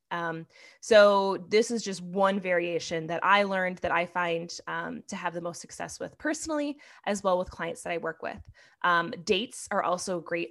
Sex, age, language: female, 20-39, English